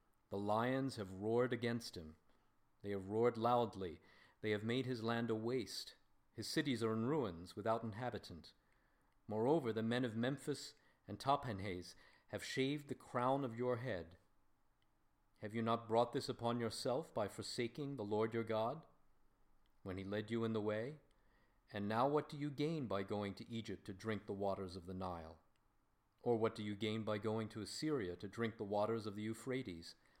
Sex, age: male, 50-69